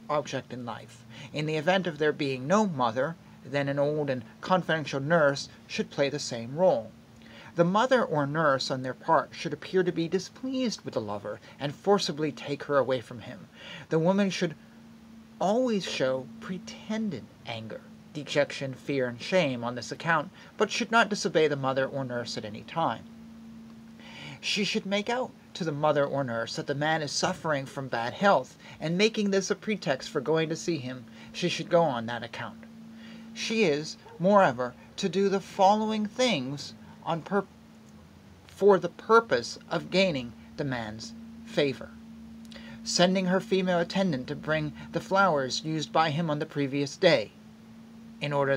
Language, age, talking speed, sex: English, 40-59, 170 wpm, male